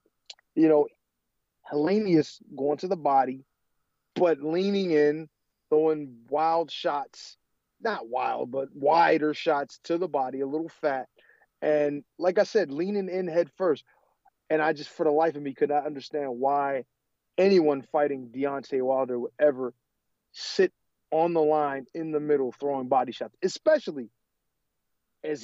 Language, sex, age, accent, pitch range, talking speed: English, male, 30-49, American, 140-175 Hz, 145 wpm